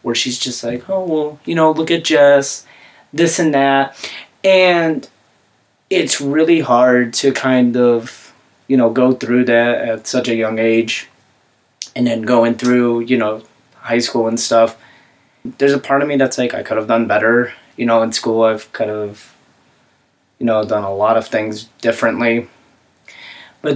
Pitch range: 110-130 Hz